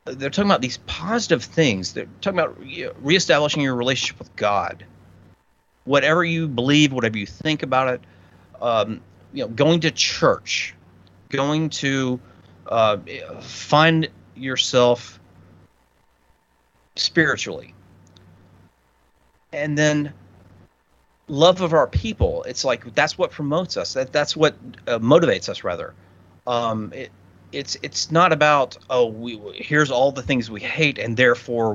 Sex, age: male, 40-59